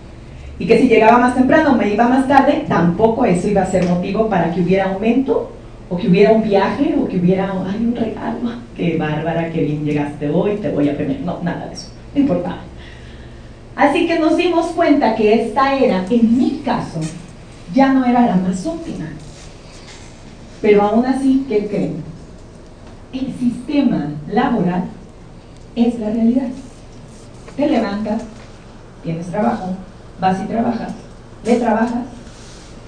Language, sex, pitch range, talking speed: Spanish, female, 175-255 Hz, 155 wpm